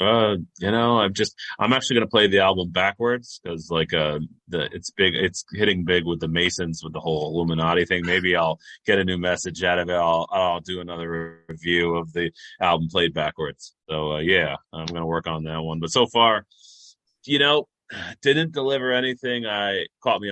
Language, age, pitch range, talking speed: English, 30-49, 80-95 Hz, 195 wpm